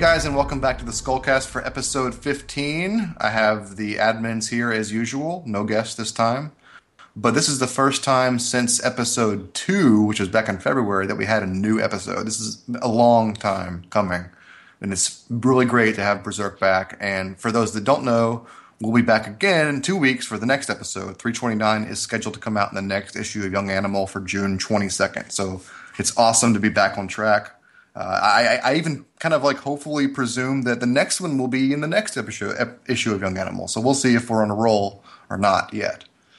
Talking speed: 215 wpm